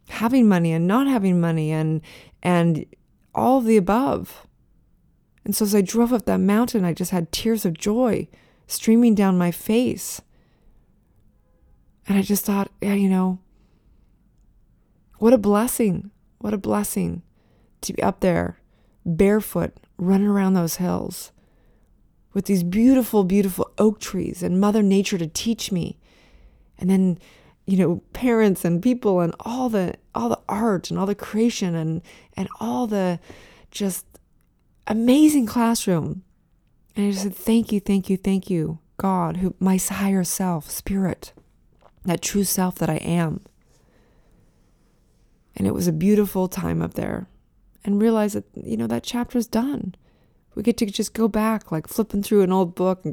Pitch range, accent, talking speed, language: 175-215 Hz, American, 155 wpm, English